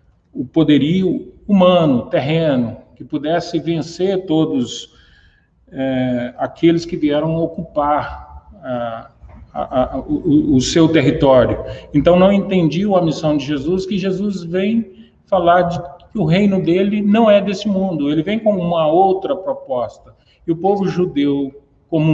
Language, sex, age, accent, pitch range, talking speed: Portuguese, male, 40-59, Brazilian, 145-195 Hz, 135 wpm